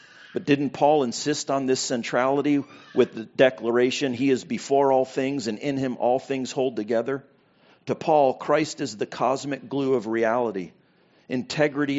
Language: English